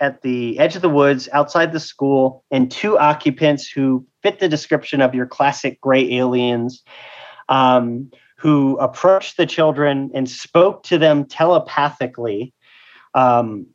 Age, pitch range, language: 40-59, 130-155 Hz, English